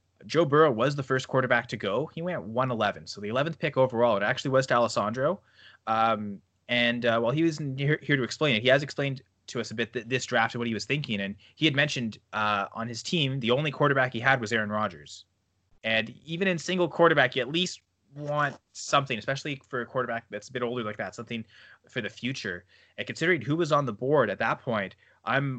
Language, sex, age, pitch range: English, male, 20-39, 110-135 Hz